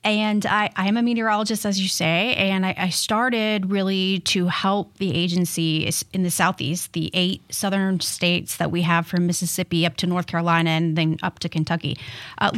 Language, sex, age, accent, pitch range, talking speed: English, female, 30-49, American, 175-205 Hz, 185 wpm